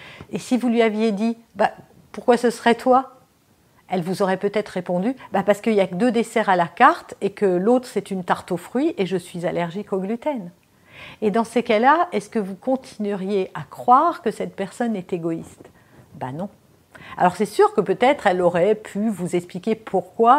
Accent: French